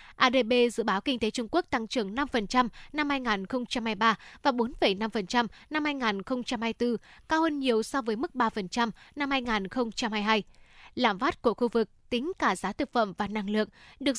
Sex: female